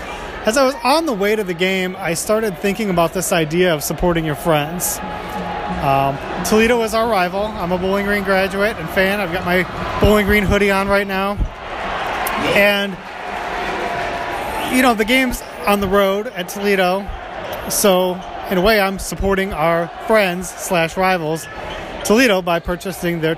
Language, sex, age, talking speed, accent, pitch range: English, male, 30-49, 165 wpm, American, 170-210 Hz